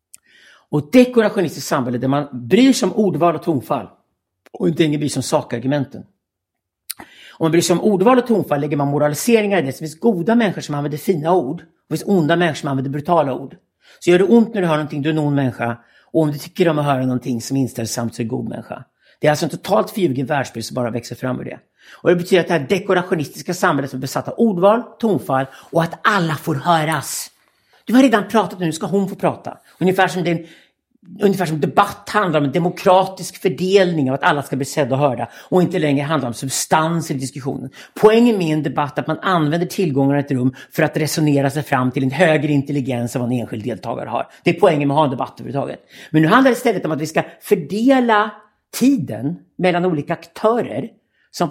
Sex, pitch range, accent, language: male, 140-190 Hz, Swedish, English